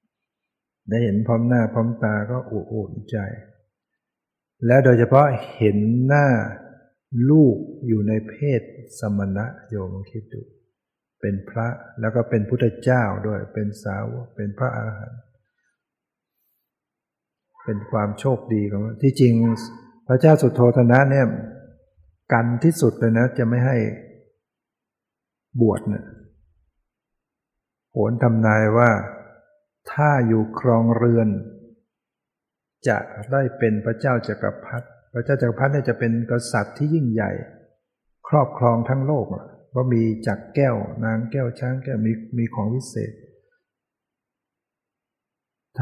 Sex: male